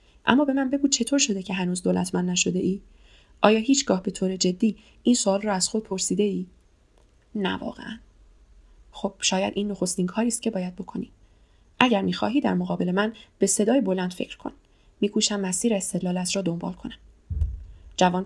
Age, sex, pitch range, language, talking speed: 20-39, female, 170-200 Hz, Persian, 160 wpm